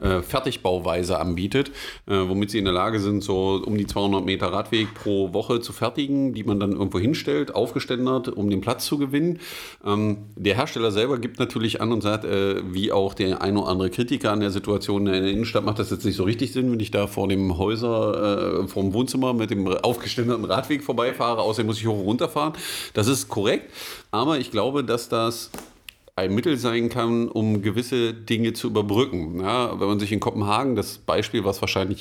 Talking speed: 200 wpm